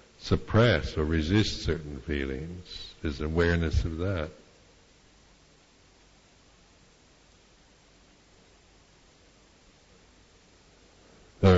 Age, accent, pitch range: 60-79, American, 75-90 Hz